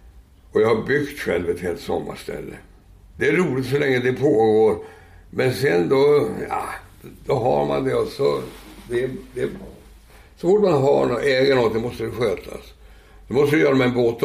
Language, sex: Swedish, male